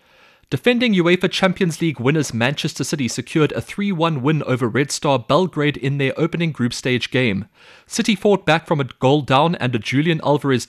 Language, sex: English, male